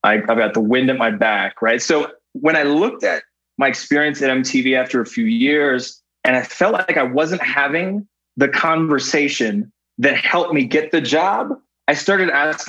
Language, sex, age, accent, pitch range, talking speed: English, male, 20-39, American, 115-150 Hz, 190 wpm